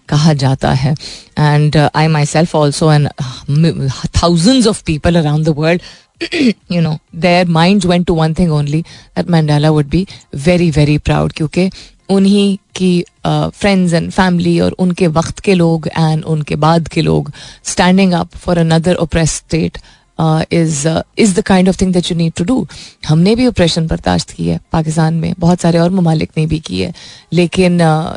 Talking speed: 170 wpm